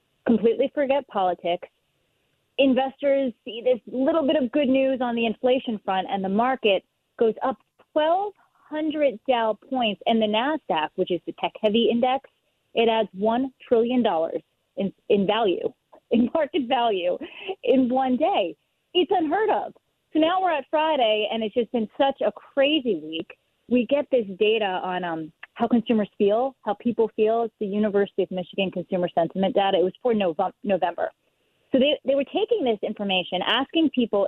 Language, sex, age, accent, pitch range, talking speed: English, female, 30-49, American, 200-275 Hz, 160 wpm